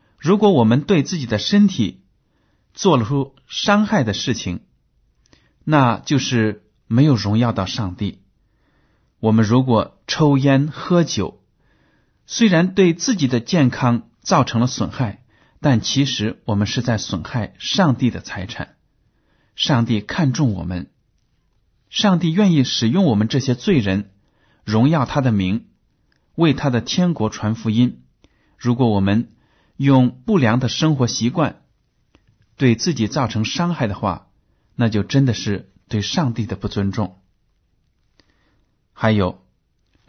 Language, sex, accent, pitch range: Chinese, male, native, 105-145 Hz